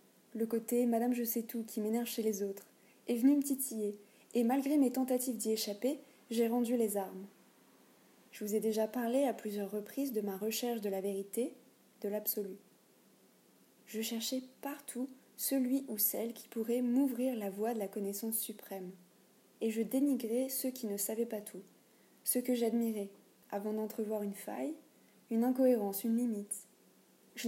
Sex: female